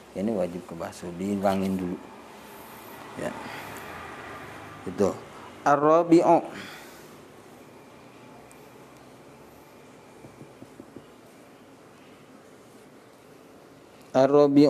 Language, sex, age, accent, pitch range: Indonesian, male, 40-59, native, 100-140 Hz